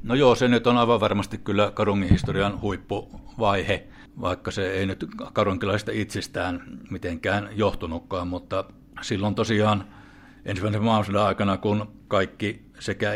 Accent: native